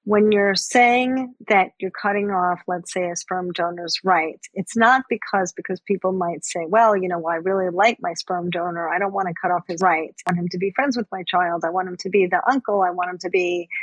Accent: American